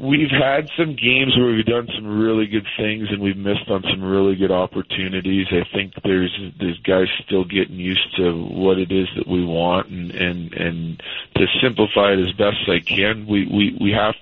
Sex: male